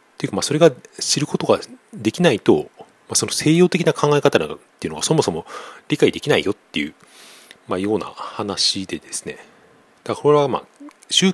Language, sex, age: Japanese, male, 40-59